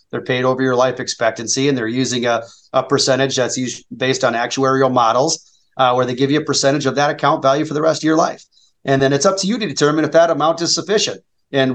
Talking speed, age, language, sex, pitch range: 250 wpm, 30-49, English, male, 130-160 Hz